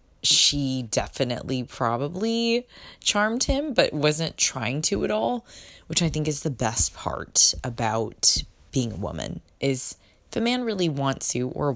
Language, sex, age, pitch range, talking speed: English, female, 20-39, 115-155 Hz, 160 wpm